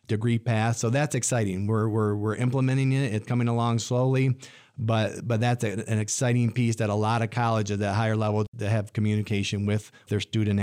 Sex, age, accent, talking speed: male, 40-59, American, 200 wpm